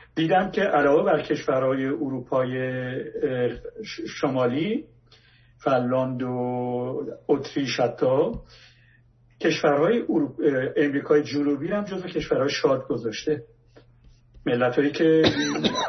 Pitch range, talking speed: 130-160 Hz, 85 wpm